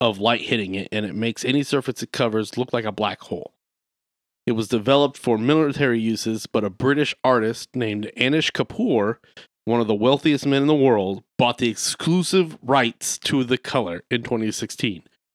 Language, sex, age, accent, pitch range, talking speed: English, male, 30-49, American, 115-145 Hz, 180 wpm